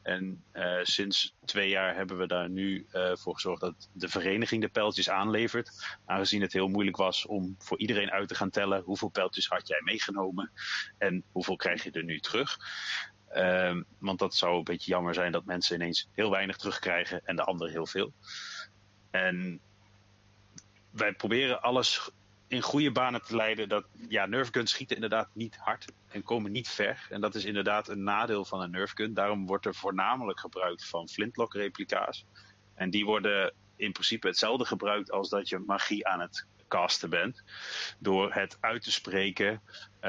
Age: 30-49